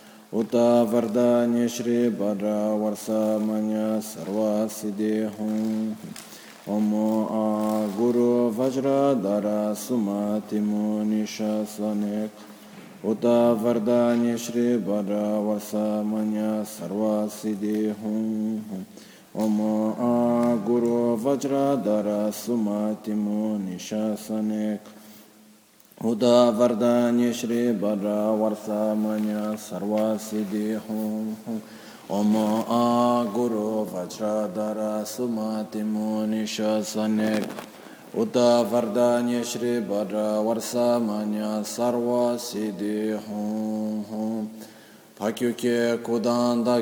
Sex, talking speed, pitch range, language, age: male, 55 wpm, 105-120 Hz, Italian, 20-39